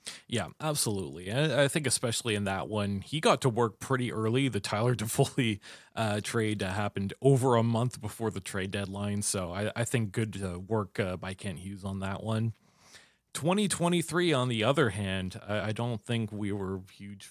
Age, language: 30-49, English